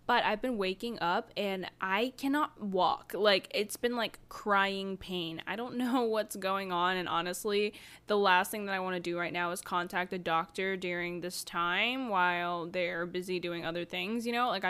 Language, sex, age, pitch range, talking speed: English, female, 10-29, 185-220 Hz, 200 wpm